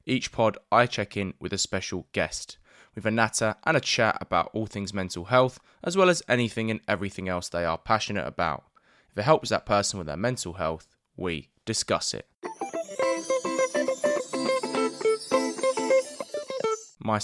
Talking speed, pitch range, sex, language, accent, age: 155 wpm, 95-135 Hz, male, English, British, 20-39